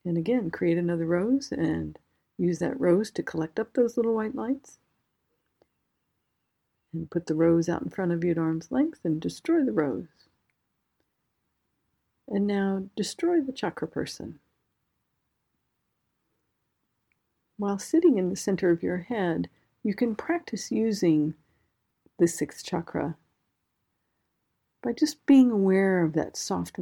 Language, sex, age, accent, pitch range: Japanese, female, 50-69, American, 170-225 Hz